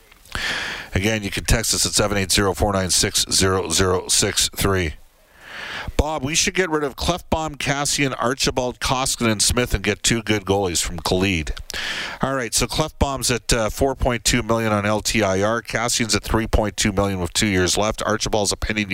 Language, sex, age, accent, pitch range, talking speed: English, male, 50-69, American, 95-115 Hz, 190 wpm